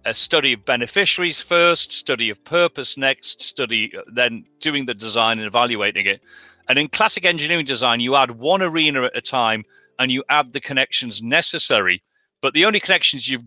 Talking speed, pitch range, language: 180 wpm, 120-180 Hz, English